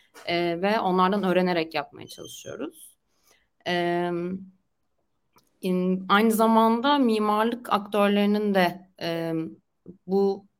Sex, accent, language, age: female, native, Turkish, 30-49